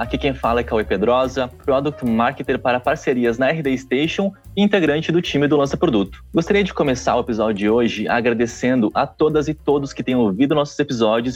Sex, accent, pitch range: male, Brazilian, 130-165 Hz